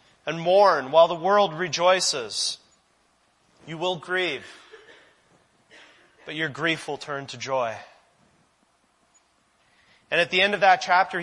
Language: English